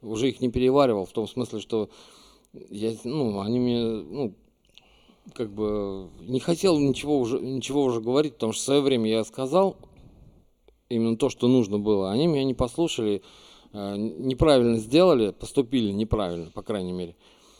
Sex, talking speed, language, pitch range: male, 155 wpm, Russian, 110-130 Hz